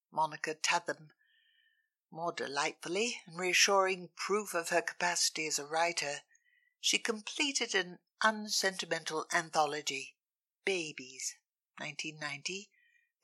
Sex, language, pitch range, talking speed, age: female, English, 160-220 Hz, 90 wpm, 60-79